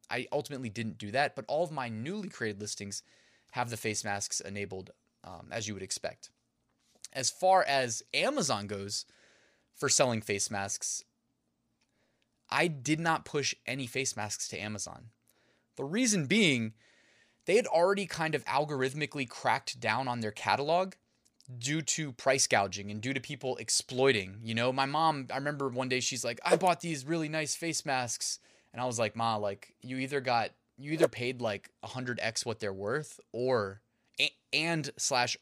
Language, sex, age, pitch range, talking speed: English, male, 20-39, 110-145 Hz, 175 wpm